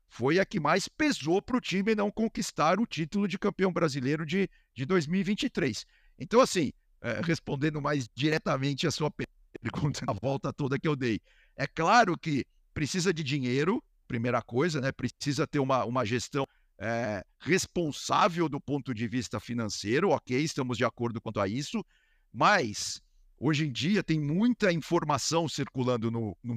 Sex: male